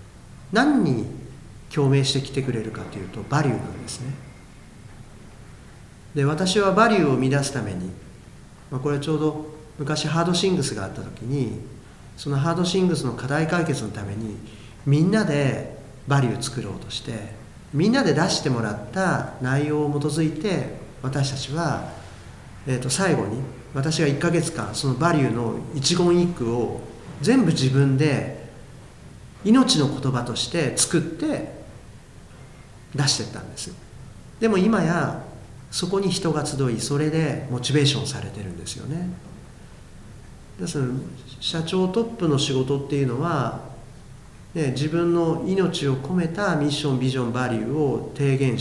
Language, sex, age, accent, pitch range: Japanese, male, 50-69, native, 120-160 Hz